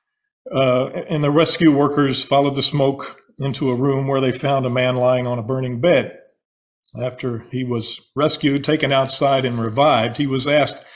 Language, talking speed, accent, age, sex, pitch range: English, 175 wpm, American, 50-69, male, 125-155 Hz